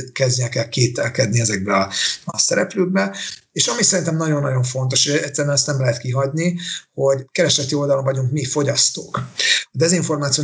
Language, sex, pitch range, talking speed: Hungarian, male, 125-145 Hz, 155 wpm